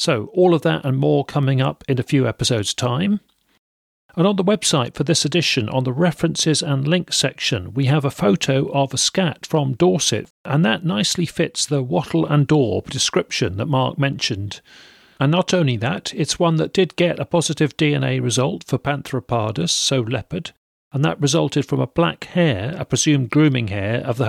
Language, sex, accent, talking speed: English, male, British, 190 wpm